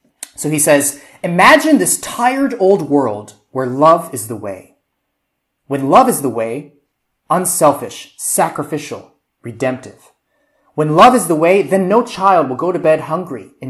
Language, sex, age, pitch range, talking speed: English, male, 30-49, 125-155 Hz, 155 wpm